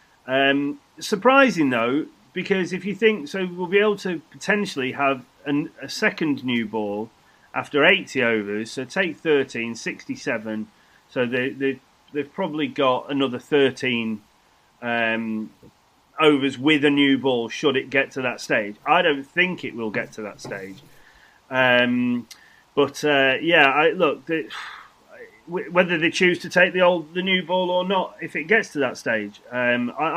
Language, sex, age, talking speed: English, male, 30-49, 165 wpm